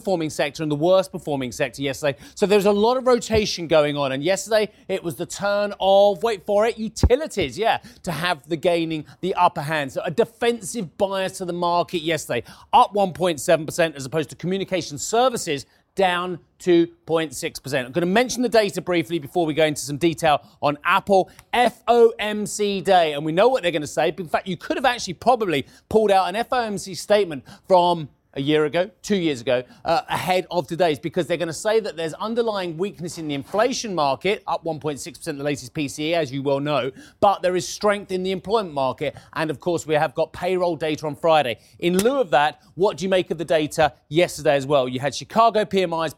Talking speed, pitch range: 205 wpm, 150-200 Hz